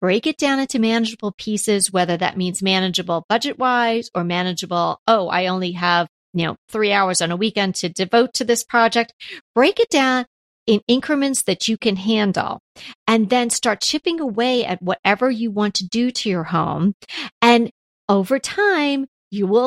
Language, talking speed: English, 175 wpm